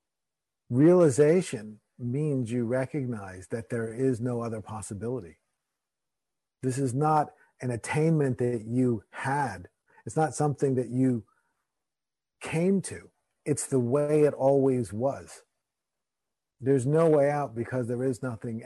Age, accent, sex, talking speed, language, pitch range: 50-69, American, male, 125 wpm, English, 120-150 Hz